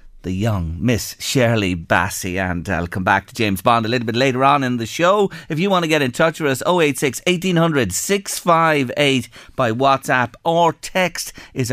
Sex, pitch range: male, 100-140 Hz